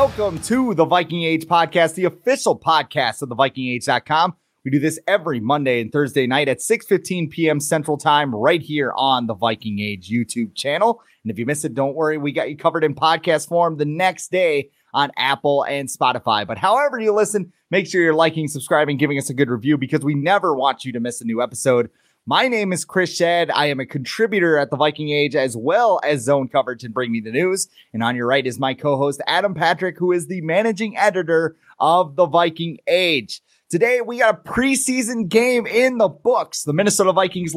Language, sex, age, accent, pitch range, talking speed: English, male, 30-49, American, 135-185 Hz, 210 wpm